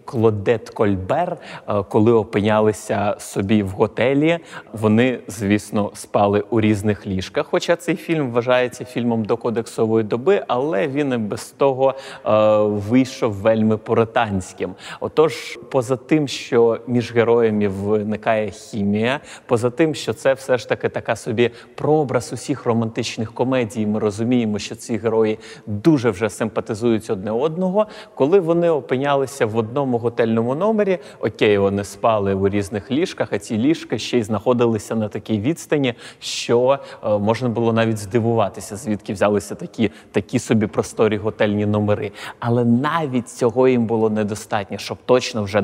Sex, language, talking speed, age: male, Ukrainian, 140 wpm, 30-49